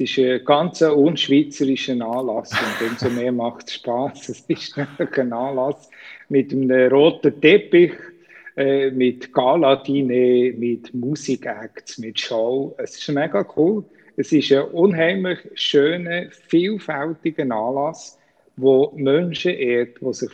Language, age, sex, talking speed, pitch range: German, 50-69, male, 125 wpm, 125-165 Hz